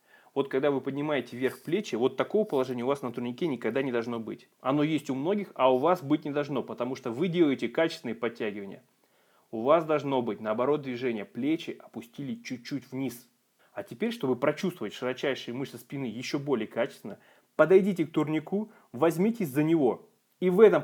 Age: 20-39